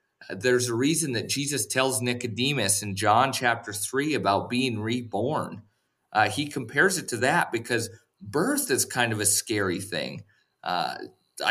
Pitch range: 100-130 Hz